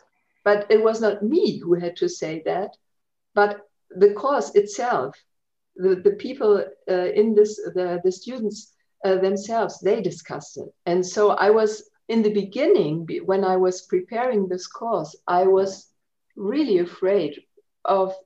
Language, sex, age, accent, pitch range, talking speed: English, female, 50-69, German, 185-220 Hz, 150 wpm